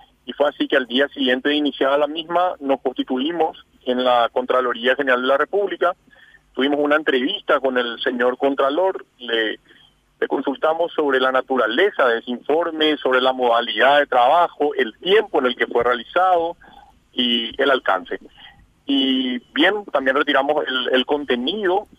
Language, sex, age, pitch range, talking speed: Spanish, male, 50-69, 135-190 Hz, 160 wpm